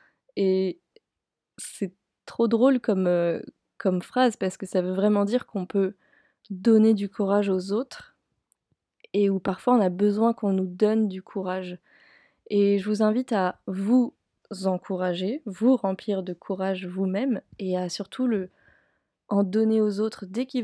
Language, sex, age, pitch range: French, female, 20-39, 190-220 Hz